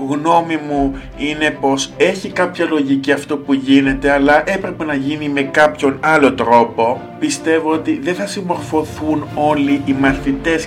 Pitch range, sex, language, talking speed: 140-180 Hz, male, Greek, 145 wpm